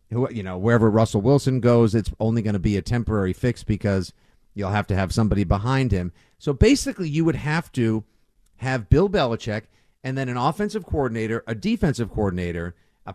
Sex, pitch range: male, 110-145 Hz